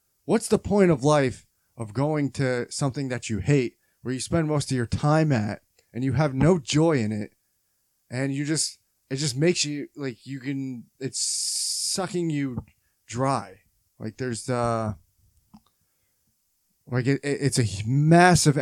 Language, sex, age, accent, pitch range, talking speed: English, male, 30-49, American, 110-150 Hz, 160 wpm